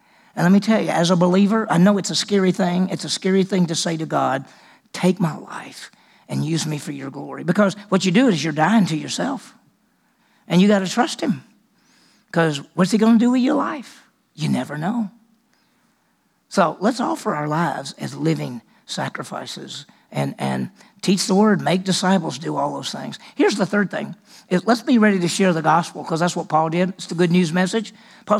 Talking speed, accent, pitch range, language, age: 210 wpm, American, 175-210 Hz, English, 50-69